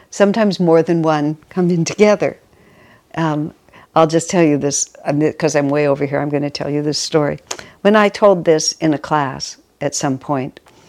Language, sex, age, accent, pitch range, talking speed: English, female, 60-79, American, 155-190 Hz, 195 wpm